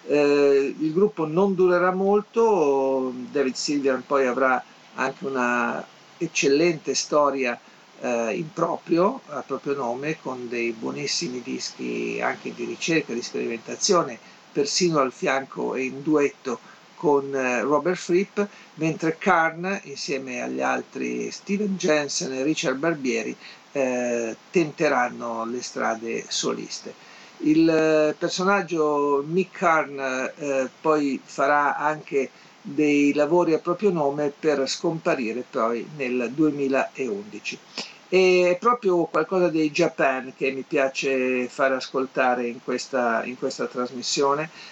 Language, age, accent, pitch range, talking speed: Italian, 50-69, native, 130-170 Hz, 115 wpm